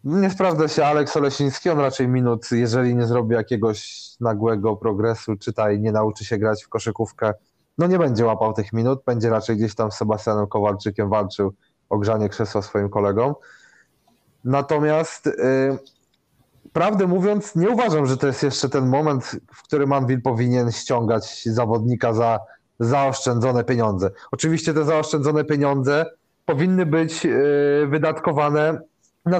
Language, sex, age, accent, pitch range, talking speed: Polish, male, 30-49, native, 115-150 Hz, 145 wpm